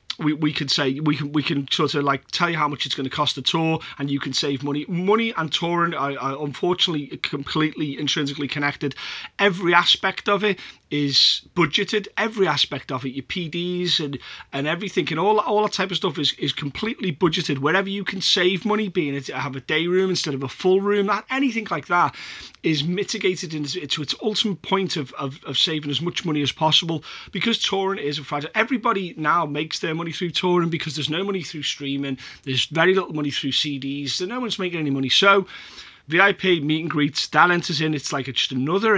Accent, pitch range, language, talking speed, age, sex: British, 145-185 Hz, English, 210 wpm, 30-49, male